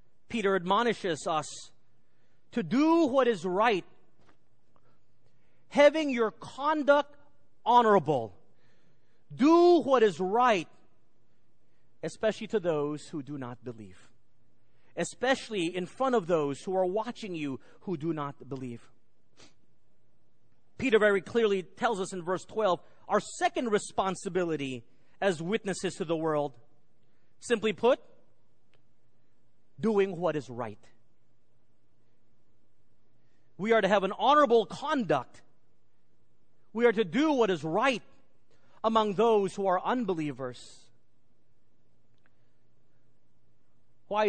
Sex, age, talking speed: male, 40-59, 105 wpm